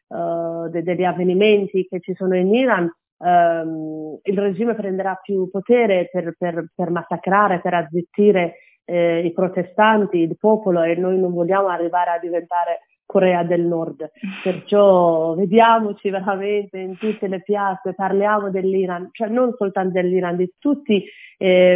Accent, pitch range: native, 175-205 Hz